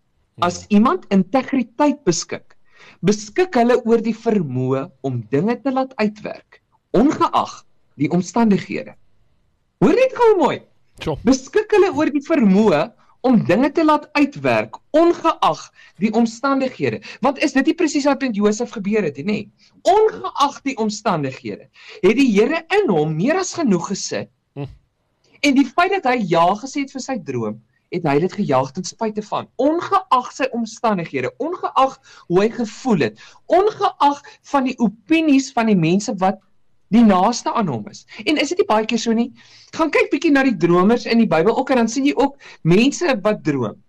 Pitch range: 185-275 Hz